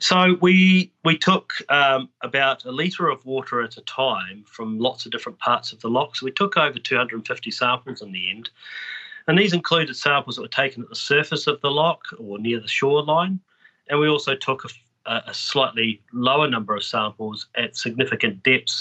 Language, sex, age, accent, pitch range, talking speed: English, male, 30-49, Australian, 110-140 Hz, 195 wpm